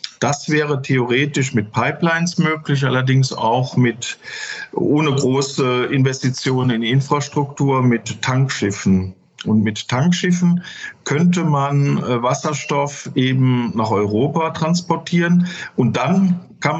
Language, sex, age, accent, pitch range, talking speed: German, male, 50-69, German, 120-150 Hz, 105 wpm